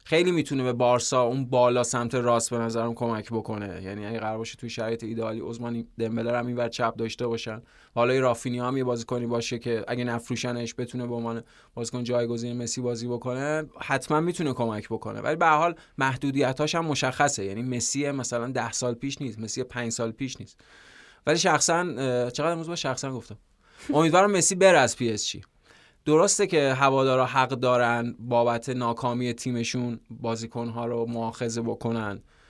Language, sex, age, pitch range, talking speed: Persian, male, 20-39, 115-135 Hz, 170 wpm